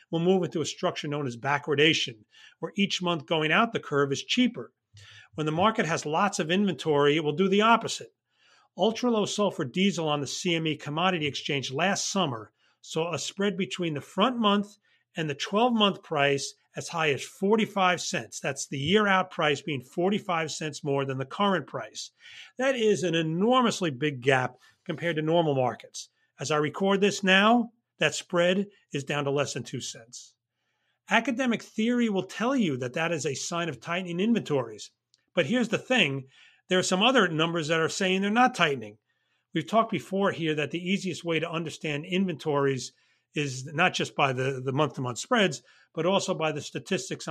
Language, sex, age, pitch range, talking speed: English, male, 40-59, 145-195 Hz, 180 wpm